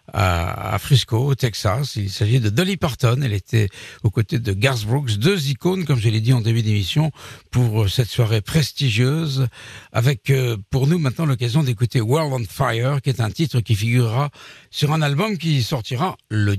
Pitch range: 105-135 Hz